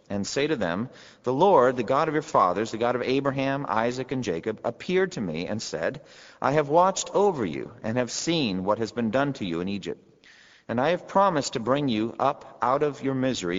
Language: English